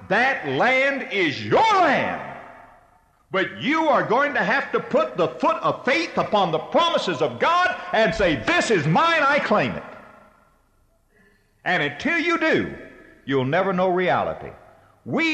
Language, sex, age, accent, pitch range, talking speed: English, male, 60-79, American, 130-185 Hz, 155 wpm